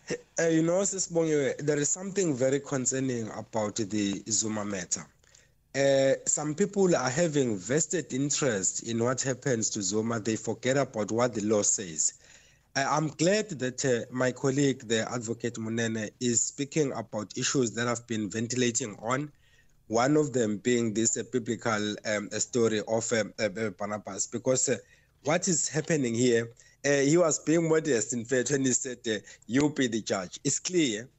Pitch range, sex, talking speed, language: 115-150 Hz, male, 165 wpm, English